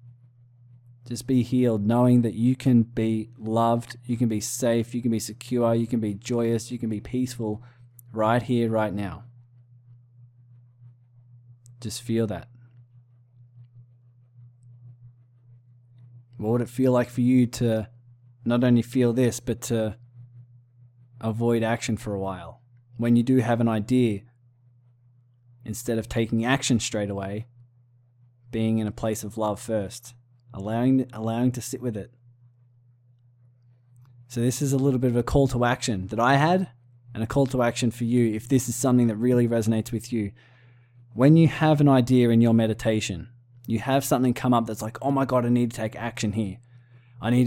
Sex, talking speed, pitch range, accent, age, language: male, 165 wpm, 115-120 Hz, Australian, 20-39, English